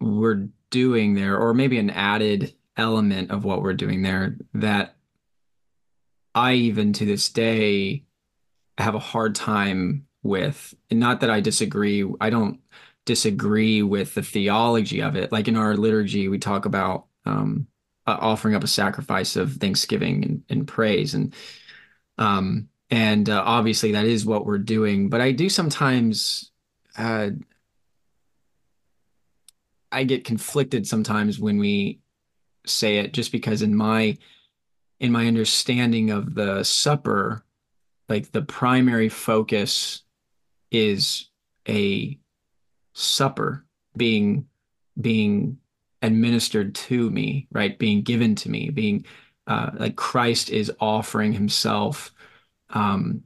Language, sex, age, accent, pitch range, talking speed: English, male, 20-39, American, 105-115 Hz, 125 wpm